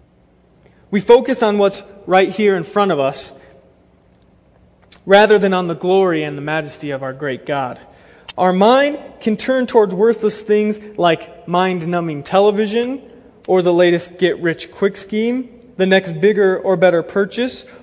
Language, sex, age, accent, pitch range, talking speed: English, male, 20-39, American, 170-220 Hz, 145 wpm